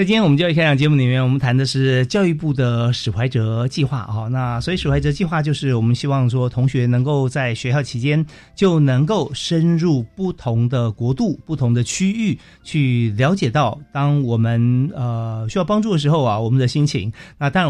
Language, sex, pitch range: Chinese, male, 120-155 Hz